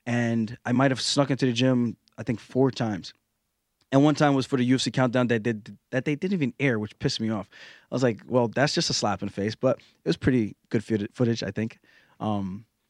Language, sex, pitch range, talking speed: English, male, 120-145 Hz, 235 wpm